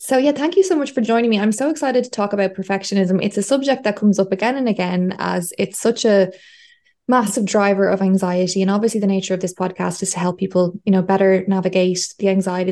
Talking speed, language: 235 wpm, English